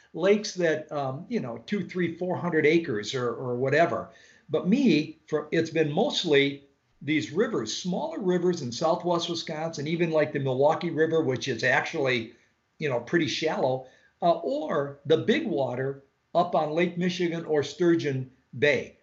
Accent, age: American, 50-69